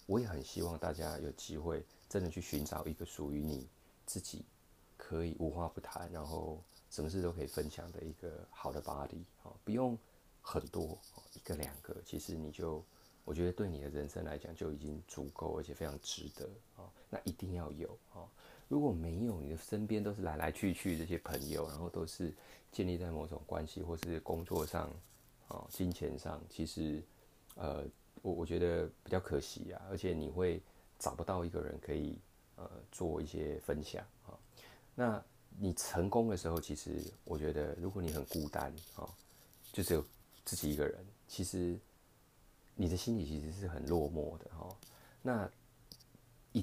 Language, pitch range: Chinese, 75-95 Hz